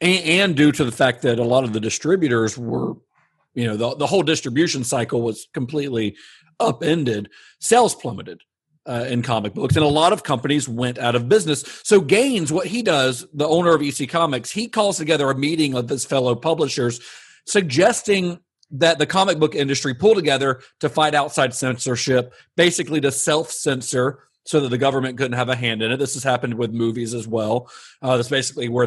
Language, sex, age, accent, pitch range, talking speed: English, male, 40-59, American, 120-165 Hz, 195 wpm